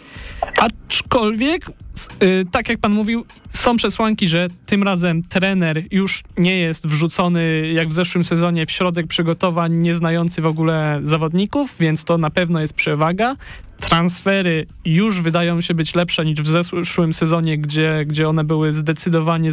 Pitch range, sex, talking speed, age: 165-200 Hz, male, 150 wpm, 20-39